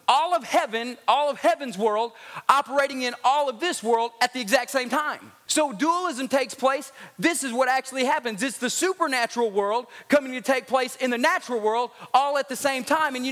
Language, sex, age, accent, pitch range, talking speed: English, male, 30-49, American, 245-315 Hz, 205 wpm